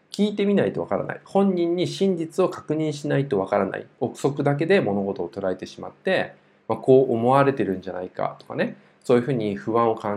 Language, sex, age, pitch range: Japanese, male, 20-39, 105-170 Hz